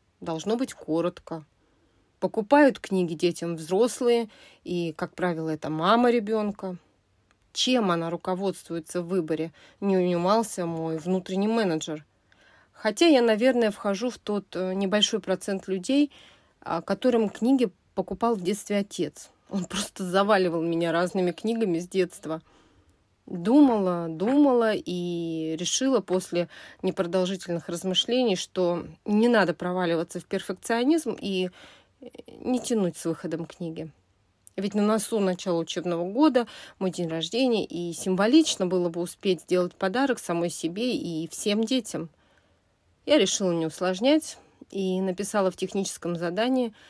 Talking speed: 120 wpm